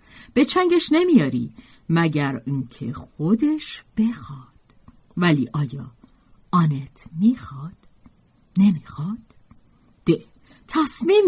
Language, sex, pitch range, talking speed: Persian, female, 155-250 Hz, 75 wpm